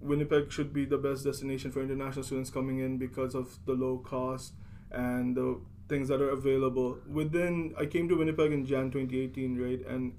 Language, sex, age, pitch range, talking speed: English, male, 20-39, 130-145 Hz, 190 wpm